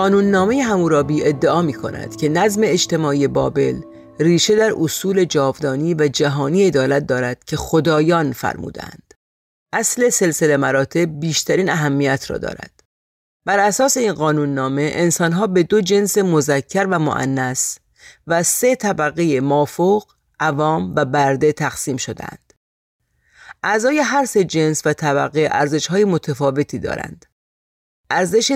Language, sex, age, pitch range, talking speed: Persian, female, 40-59, 140-185 Hz, 130 wpm